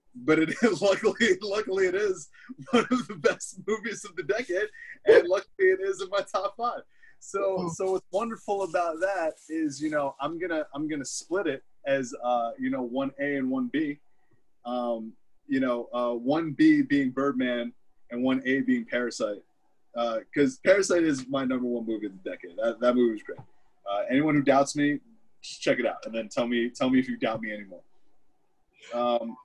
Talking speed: 200 wpm